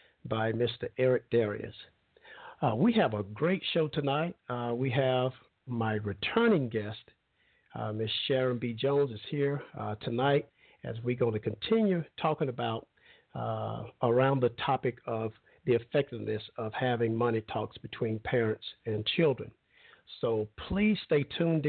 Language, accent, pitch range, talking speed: English, American, 110-145 Hz, 145 wpm